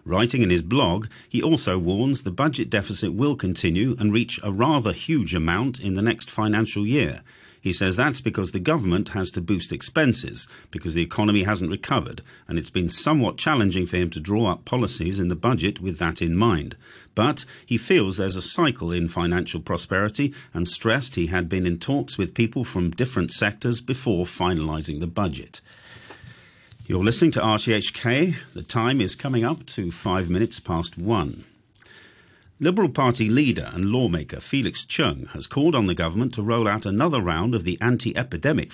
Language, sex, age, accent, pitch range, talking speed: English, male, 40-59, British, 90-115 Hz, 180 wpm